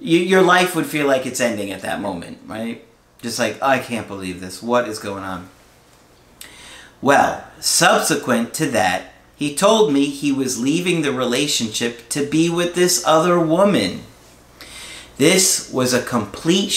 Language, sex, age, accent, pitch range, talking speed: English, male, 40-59, American, 100-145 Hz, 155 wpm